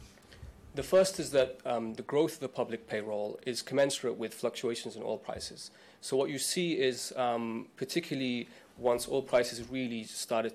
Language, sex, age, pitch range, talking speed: English, male, 30-49, 110-130 Hz, 170 wpm